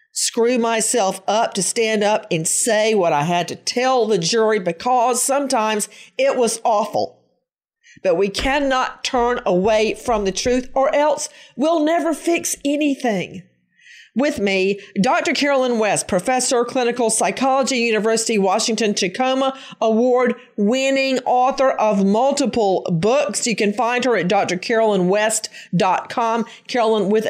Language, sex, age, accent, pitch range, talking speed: English, female, 40-59, American, 185-250 Hz, 130 wpm